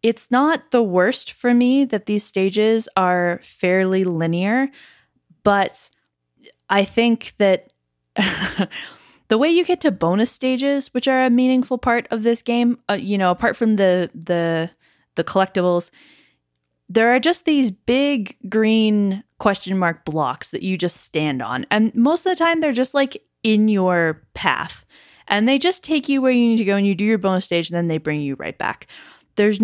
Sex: female